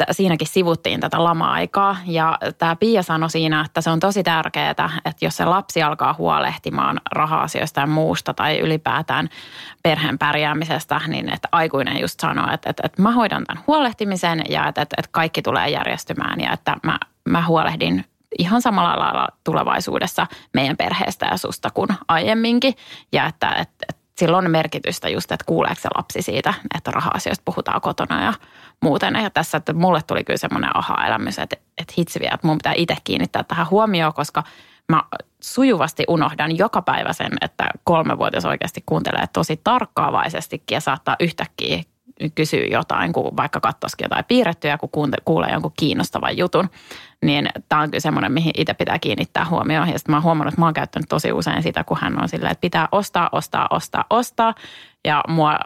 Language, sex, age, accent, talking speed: English, female, 20-39, Finnish, 170 wpm